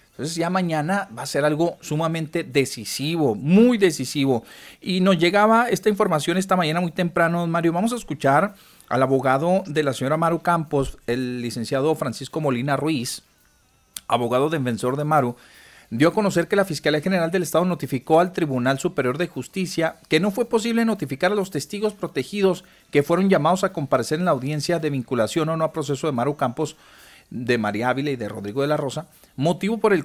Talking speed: 185 wpm